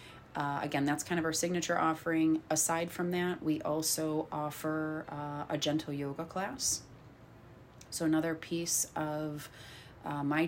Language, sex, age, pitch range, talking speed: English, female, 30-49, 135-155 Hz, 145 wpm